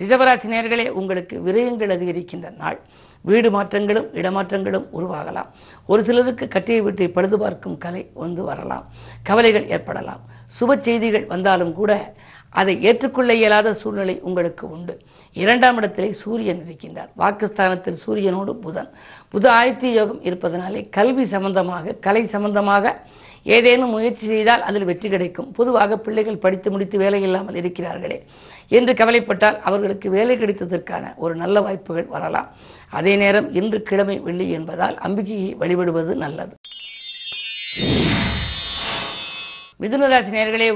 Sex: female